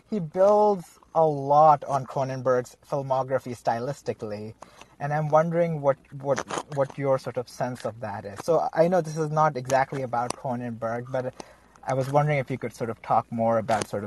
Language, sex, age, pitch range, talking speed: English, male, 30-49, 130-175 Hz, 185 wpm